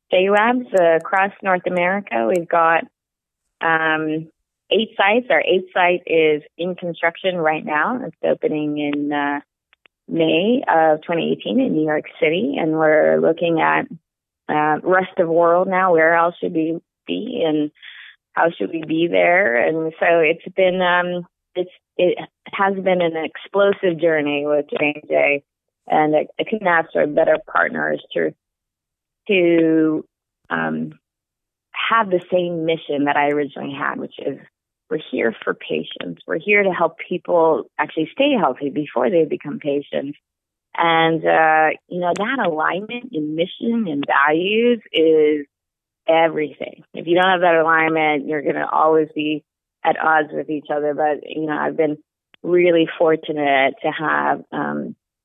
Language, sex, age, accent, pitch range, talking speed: English, female, 20-39, American, 150-180 Hz, 150 wpm